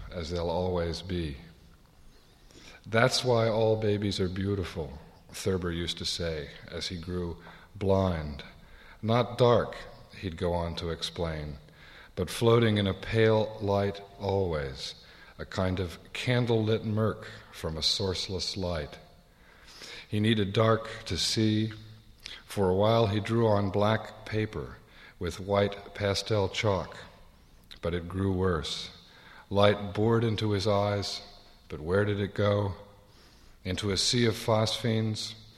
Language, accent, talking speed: English, American, 130 wpm